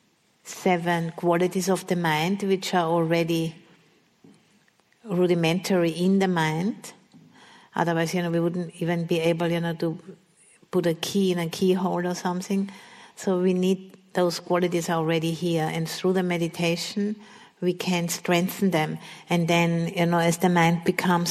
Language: English